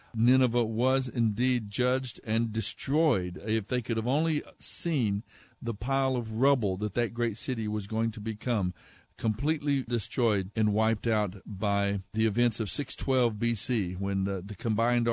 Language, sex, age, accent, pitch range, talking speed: English, male, 60-79, American, 110-140 Hz, 155 wpm